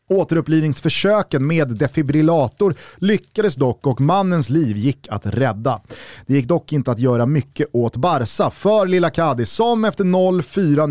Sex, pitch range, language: male, 125-185 Hz, Swedish